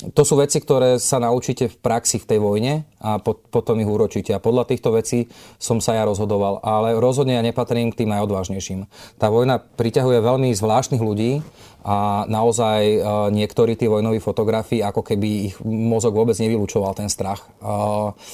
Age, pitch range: 30-49, 105-115 Hz